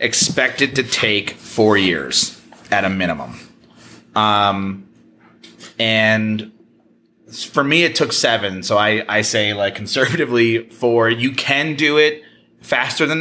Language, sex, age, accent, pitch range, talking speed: English, male, 30-49, American, 100-125 Hz, 125 wpm